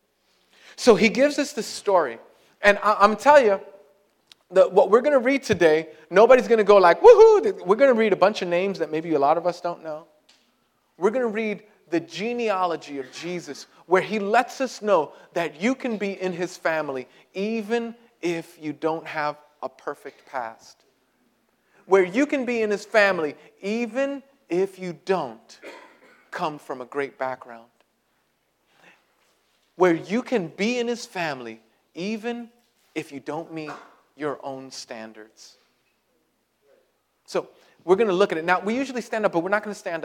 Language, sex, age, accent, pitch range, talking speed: English, male, 40-59, American, 155-230 Hz, 175 wpm